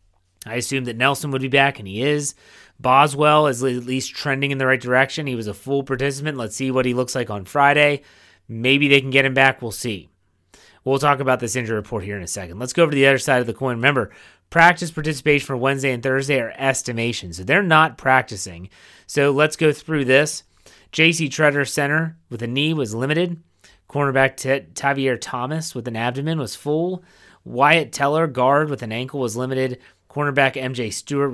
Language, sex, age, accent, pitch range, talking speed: English, male, 30-49, American, 120-145 Hz, 205 wpm